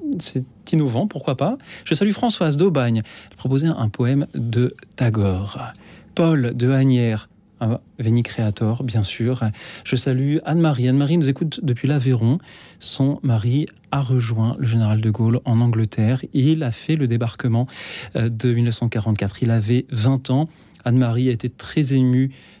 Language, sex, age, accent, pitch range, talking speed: French, male, 40-59, French, 115-145 Hz, 150 wpm